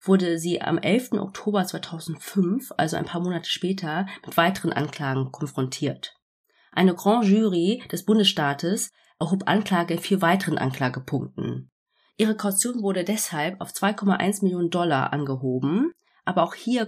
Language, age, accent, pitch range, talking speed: German, 30-49, German, 160-210 Hz, 135 wpm